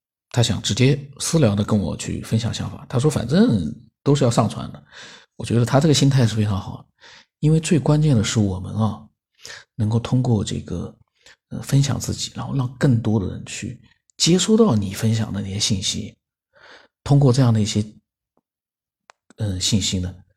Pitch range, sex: 110-140 Hz, male